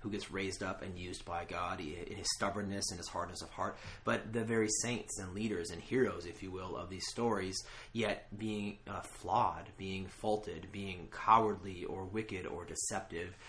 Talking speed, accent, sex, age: 185 wpm, American, male, 30-49